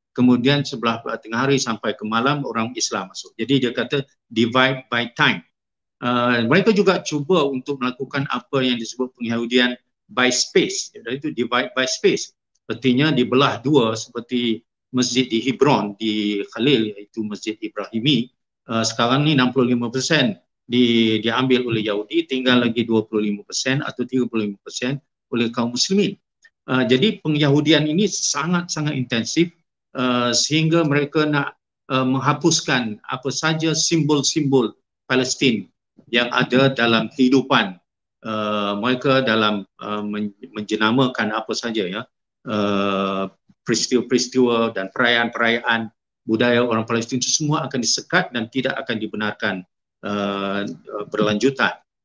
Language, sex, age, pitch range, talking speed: Malay, male, 50-69, 110-140 Hz, 120 wpm